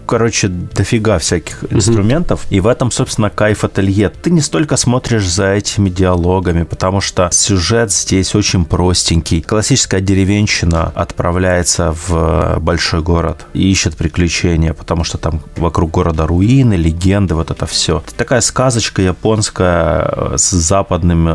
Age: 20-39